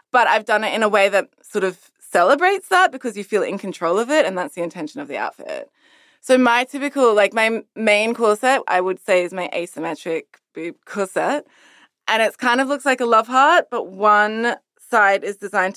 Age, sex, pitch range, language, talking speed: 20-39, female, 170-230 Hz, English, 210 wpm